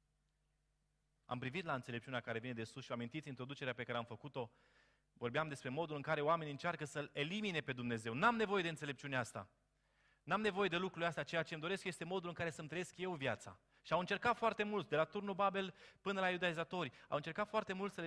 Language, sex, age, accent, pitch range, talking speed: Romanian, male, 30-49, native, 135-175 Hz, 220 wpm